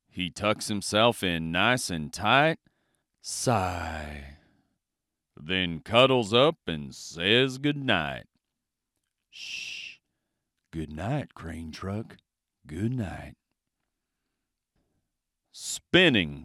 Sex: male